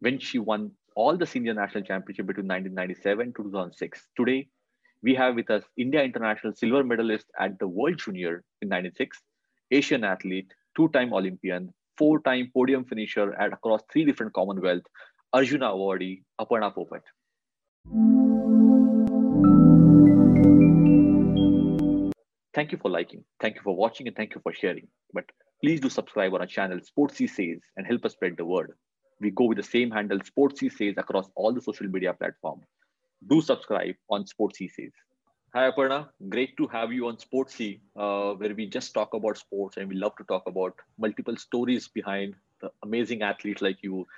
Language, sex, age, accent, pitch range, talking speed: English, male, 30-49, Indian, 100-130 Hz, 160 wpm